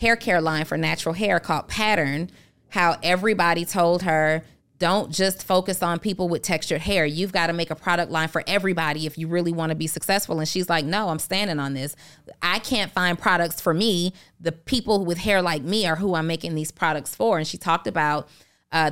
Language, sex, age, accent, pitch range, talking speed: English, female, 30-49, American, 155-185 Hz, 215 wpm